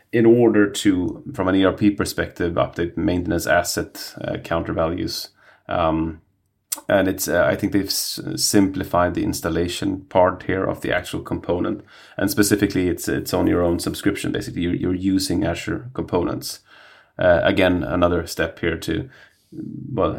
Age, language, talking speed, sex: 30-49, English, 150 wpm, male